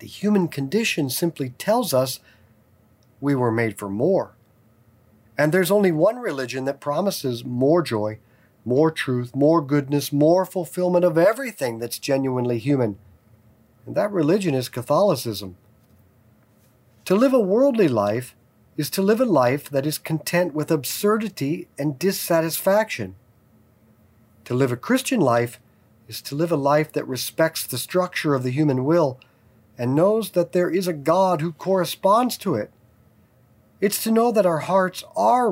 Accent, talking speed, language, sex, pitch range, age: American, 150 wpm, English, male, 115-170 Hz, 50-69